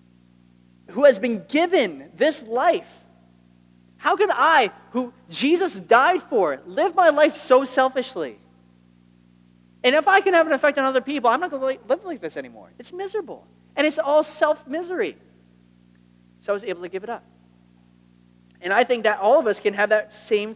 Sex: male